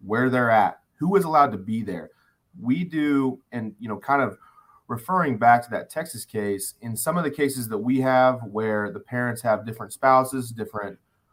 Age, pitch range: 30-49, 105-135 Hz